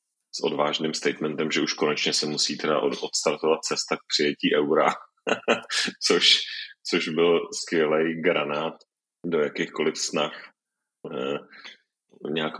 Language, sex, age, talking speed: Czech, male, 30-49, 115 wpm